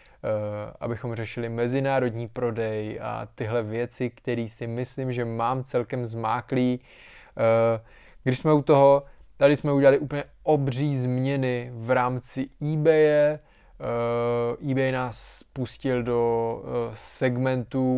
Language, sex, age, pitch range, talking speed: Czech, male, 20-39, 120-135 Hz, 105 wpm